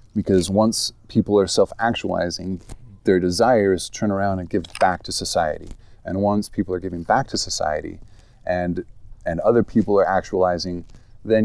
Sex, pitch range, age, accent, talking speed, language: male, 95-115 Hz, 30-49, American, 150 wpm, English